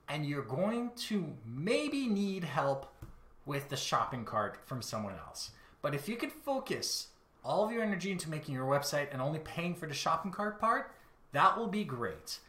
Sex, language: male, English